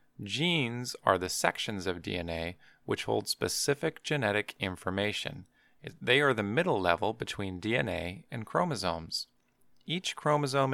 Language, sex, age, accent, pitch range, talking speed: English, male, 40-59, American, 95-140 Hz, 125 wpm